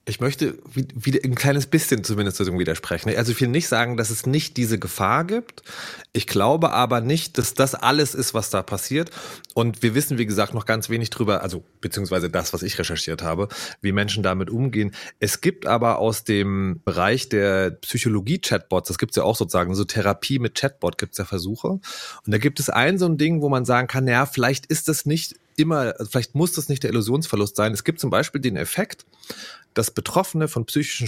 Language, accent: German, German